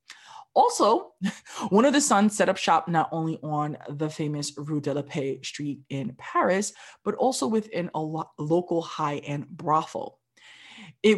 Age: 20-39